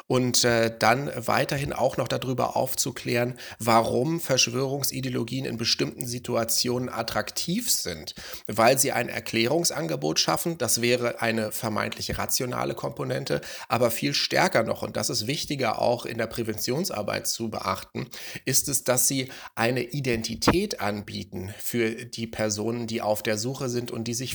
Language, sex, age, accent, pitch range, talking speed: German, male, 30-49, German, 115-130 Hz, 140 wpm